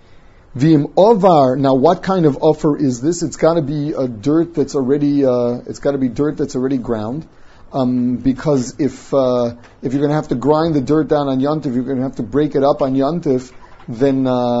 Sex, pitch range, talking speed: male, 130-160 Hz, 215 wpm